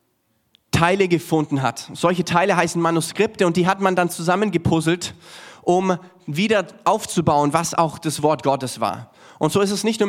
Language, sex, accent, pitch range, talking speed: German, male, German, 155-195 Hz, 165 wpm